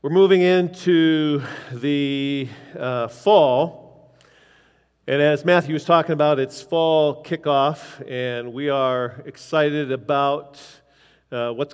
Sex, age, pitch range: male, 50-69, 140-175 Hz